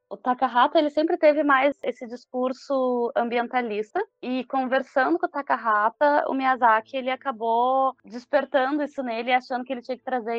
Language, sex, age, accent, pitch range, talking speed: Portuguese, female, 20-39, Brazilian, 240-275 Hz, 155 wpm